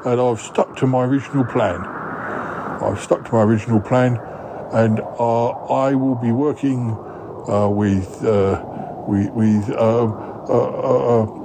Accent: British